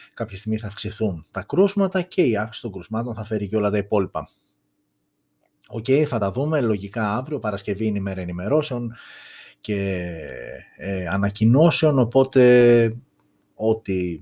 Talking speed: 130 wpm